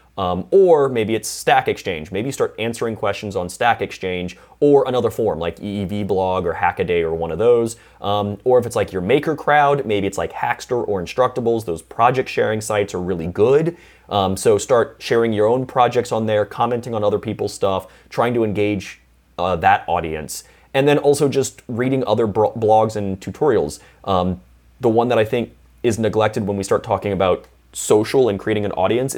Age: 30-49